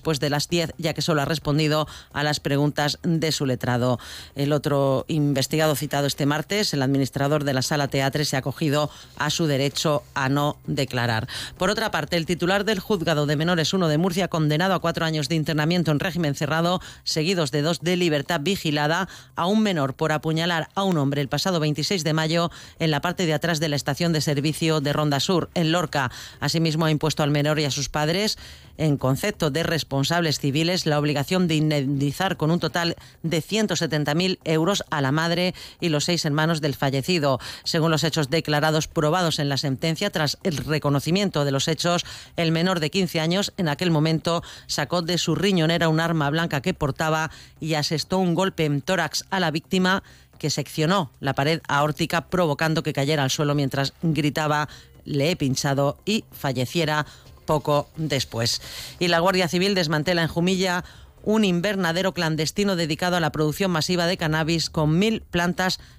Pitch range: 145-175 Hz